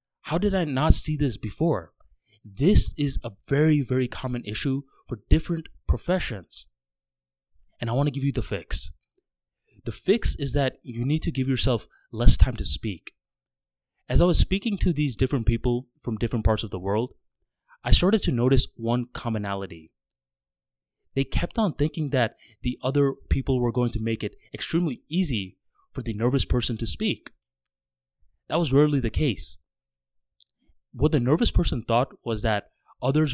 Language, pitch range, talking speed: English, 95-130 Hz, 165 wpm